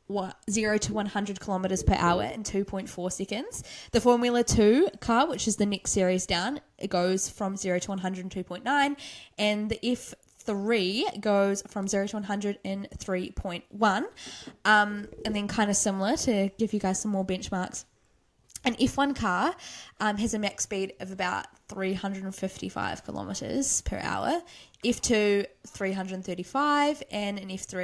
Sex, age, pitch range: female, 10-29, 190-230 Hz